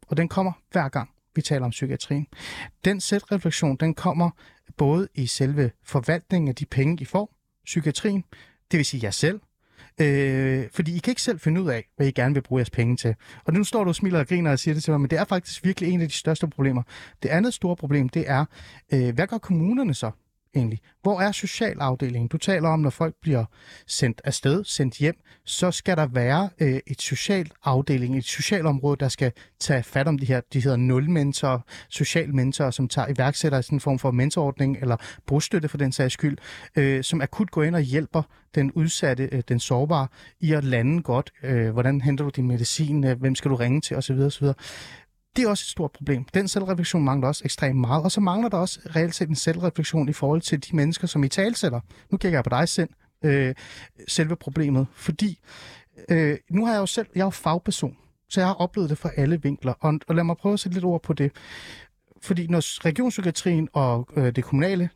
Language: Danish